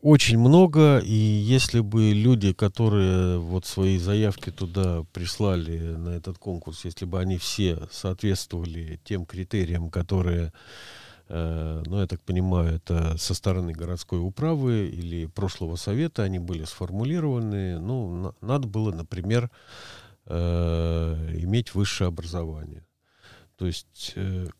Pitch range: 85-105 Hz